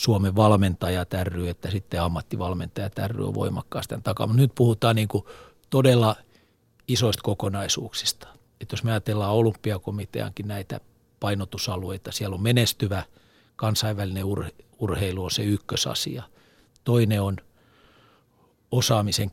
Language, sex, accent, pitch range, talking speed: Finnish, male, native, 100-120 Hz, 110 wpm